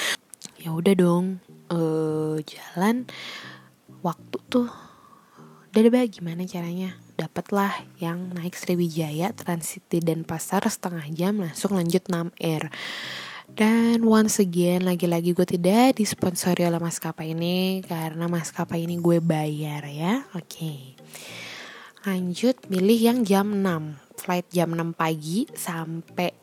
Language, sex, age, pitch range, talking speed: Indonesian, female, 20-39, 160-190 Hz, 115 wpm